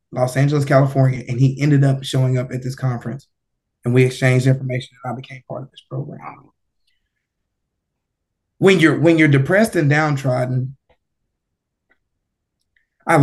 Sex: male